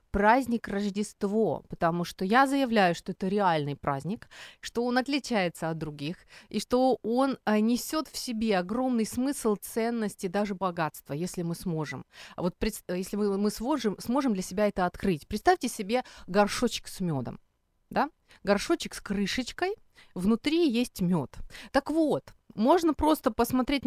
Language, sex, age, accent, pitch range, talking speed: Ukrainian, female, 30-49, native, 185-240 Hz, 140 wpm